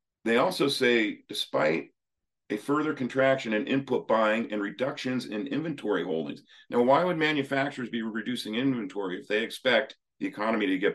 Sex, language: male, English